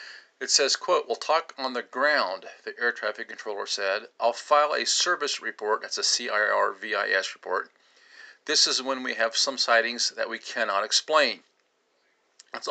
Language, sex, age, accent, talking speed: English, male, 50-69, American, 160 wpm